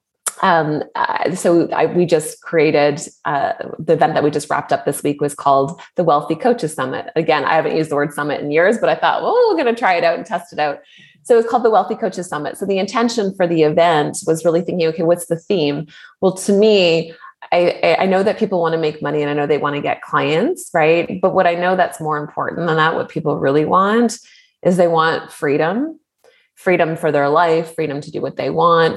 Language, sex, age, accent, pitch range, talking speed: English, female, 20-39, American, 150-205 Hz, 235 wpm